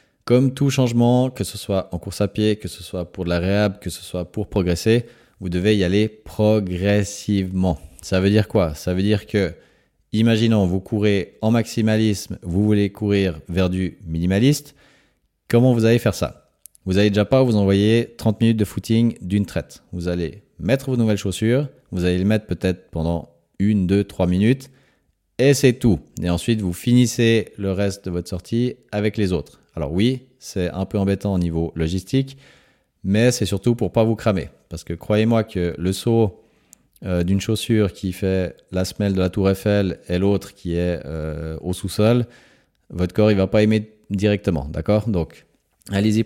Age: 30-49